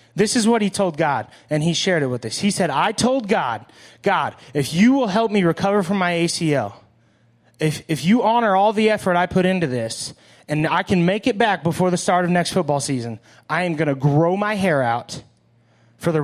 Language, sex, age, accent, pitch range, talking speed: English, male, 30-49, American, 140-205 Hz, 225 wpm